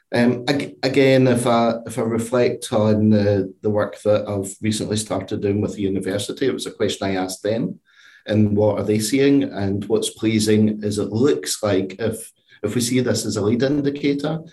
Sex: male